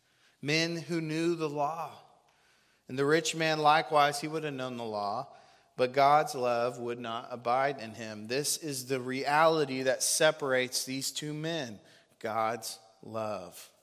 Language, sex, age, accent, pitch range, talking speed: English, male, 30-49, American, 105-135 Hz, 150 wpm